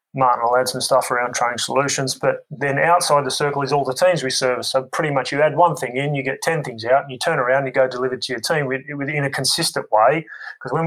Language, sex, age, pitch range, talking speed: English, male, 20-39, 125-145 Hz, 285 wpm